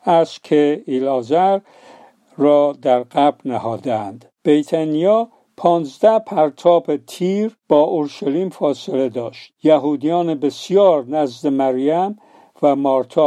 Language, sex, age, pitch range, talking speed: Persian, male, 50-69, 135-180 Hz, 95 wpm